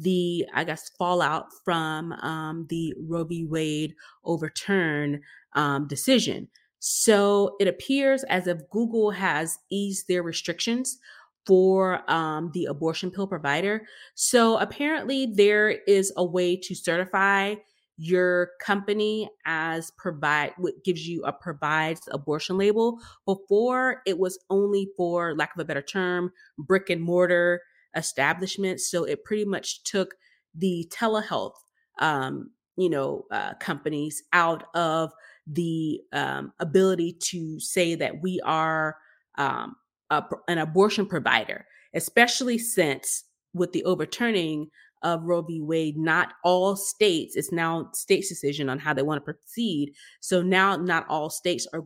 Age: 20-39